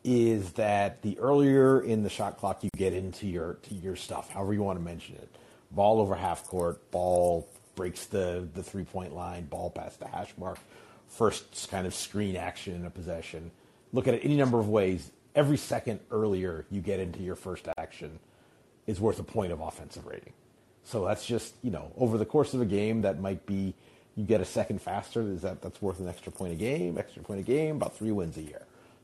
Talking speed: 215 wpm